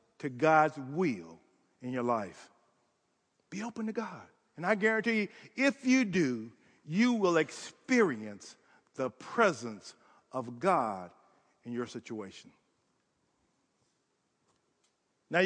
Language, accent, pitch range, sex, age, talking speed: English, American, 160-230 Hz, male, 50-69, 110 wpm